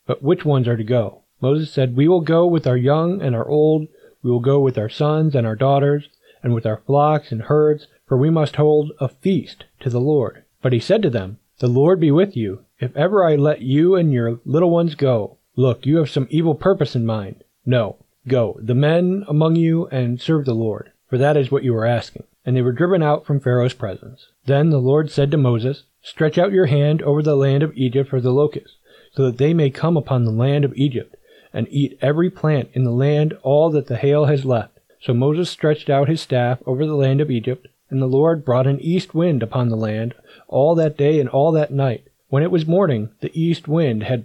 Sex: male